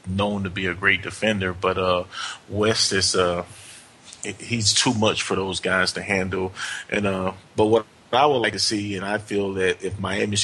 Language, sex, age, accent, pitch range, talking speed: English, male, 30-49, American, 95-110 Hz, 195 wpm